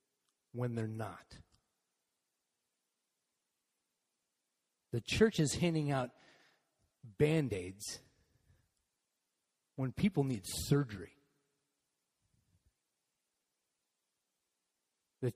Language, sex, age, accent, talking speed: English, male, 40-59, American, 55 wpm